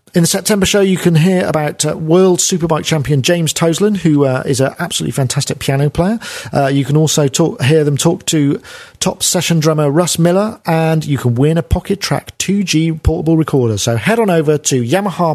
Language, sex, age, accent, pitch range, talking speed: English, male, 40-59, British, 135-170 Hz, 205 wpm